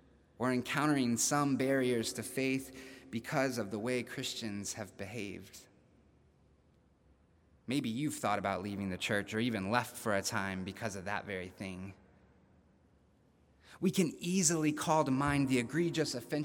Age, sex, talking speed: 30-49, male, 140 wpm